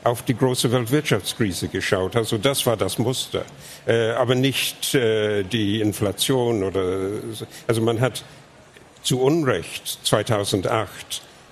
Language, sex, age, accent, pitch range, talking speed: German, male, 70-89, German, 110-140 Hz, 110 wpm